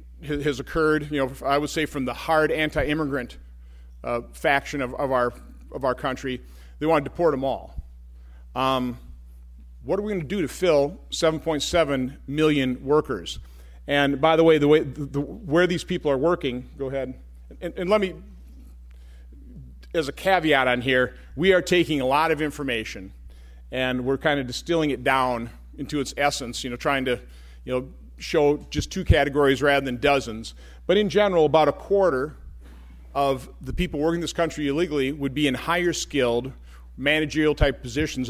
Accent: American